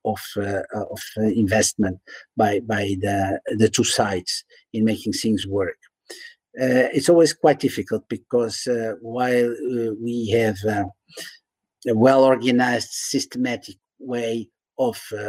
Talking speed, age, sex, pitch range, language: 120 wpm, 50-69, male, 110-125 Hz, English